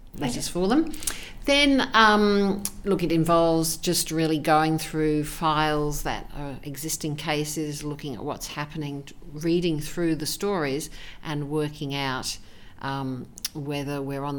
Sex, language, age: female, English, 50-69